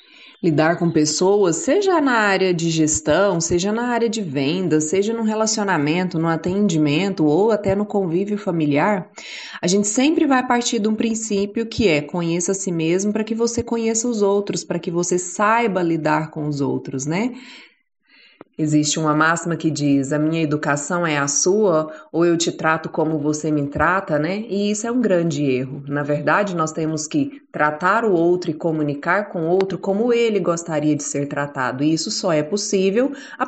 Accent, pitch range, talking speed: Brazilian, 160-220 Hz, 185 wpm